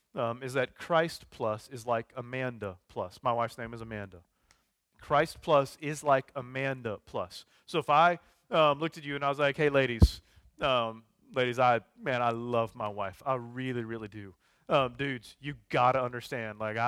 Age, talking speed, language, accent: 30-49, 180 wpm, English, American